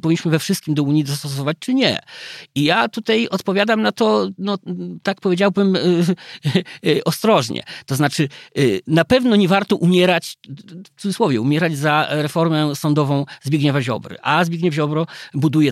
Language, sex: Polish, male